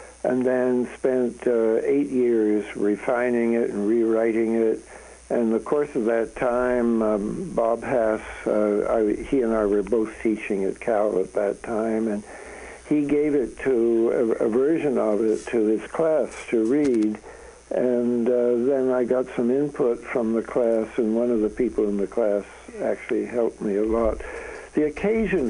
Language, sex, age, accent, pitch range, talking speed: English, male, 60-79, American, 110-130 Hz, 170 wpm